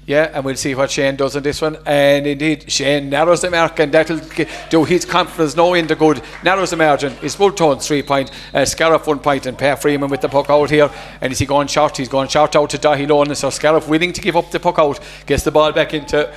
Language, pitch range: English, 150-175 Hz